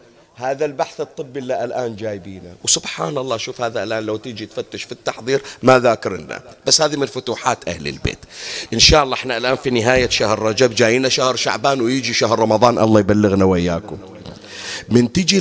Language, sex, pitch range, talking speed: Arabic, male, 105-155 Hz, 170 wpm